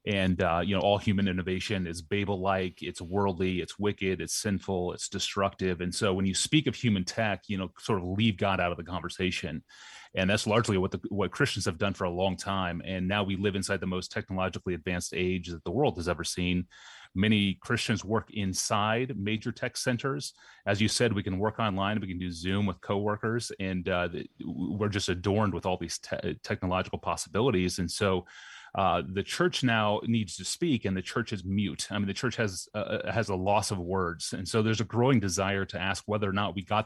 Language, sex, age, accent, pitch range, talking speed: English, male, 30-49, American, 95-110 Hz, 215 wpm